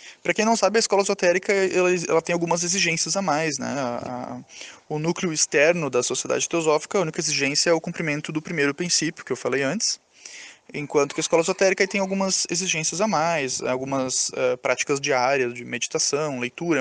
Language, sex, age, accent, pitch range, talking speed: Portuguese, male, 20-39, Brazilian, 145-190 Hz, 190 wpm